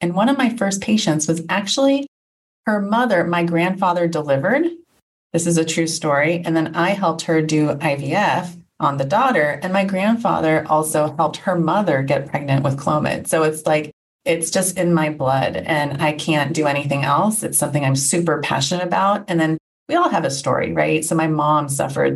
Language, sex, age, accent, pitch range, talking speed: English, female, 30-49, American, 145-185 Hz, 190 wpm